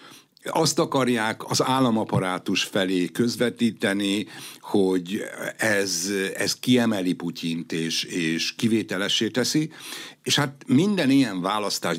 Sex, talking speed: male, 100 wpm